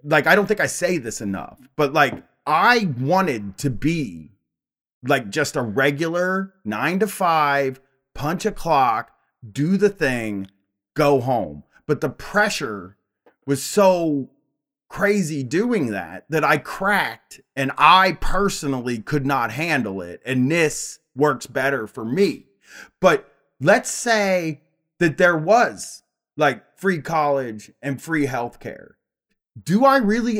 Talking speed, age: 135 wpm, 30-49